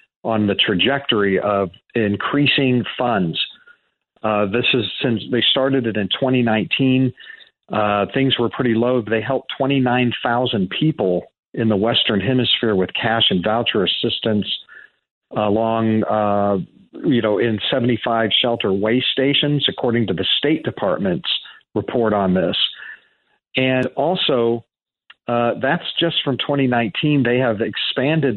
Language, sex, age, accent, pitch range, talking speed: English, male, 40-59, American, 105-135 Hz, 125 wpm